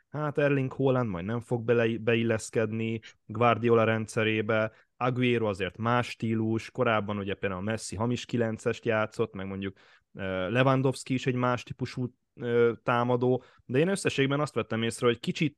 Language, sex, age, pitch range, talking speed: Hungarian, male, 20-39, 105-120 Hz, 145 wpm